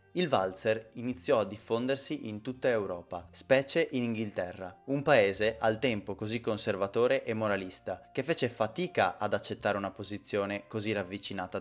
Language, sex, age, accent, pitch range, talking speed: Italian, male, 20-39, native, 100-130 Hz, 145 wpm